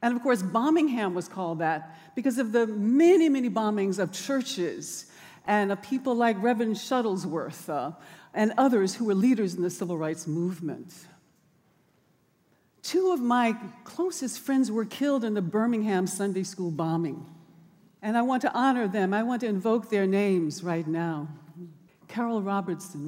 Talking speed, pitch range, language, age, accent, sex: 160 wpm, 180-240 Hz, English, 60-79, American, female